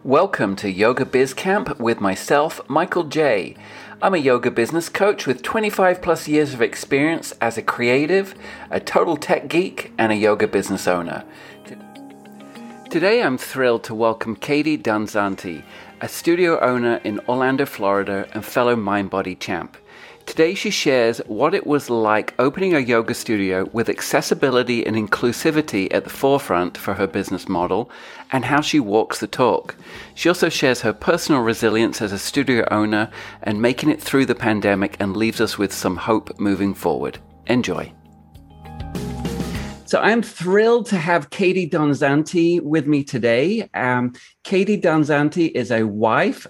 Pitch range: 105-145 Hz